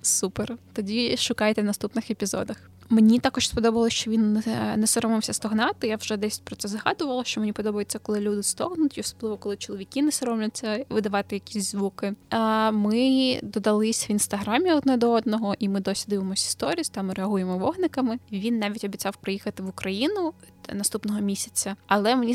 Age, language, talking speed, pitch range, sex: 10-29, Ukrainian, 160 wpm, 200-225 Hz, female